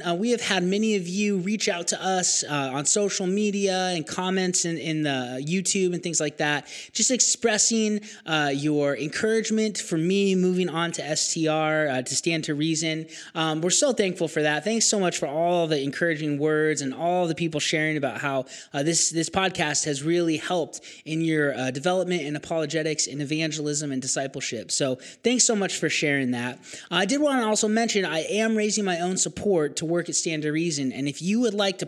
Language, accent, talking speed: English, American, 205 wpm